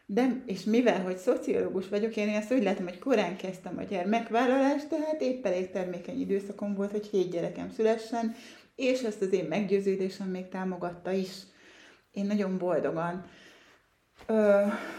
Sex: female